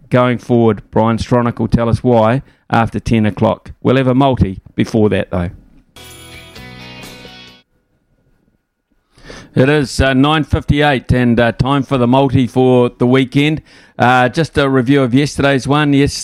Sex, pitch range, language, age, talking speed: male, 120-140 Hz, English, 50-69, 145 wpm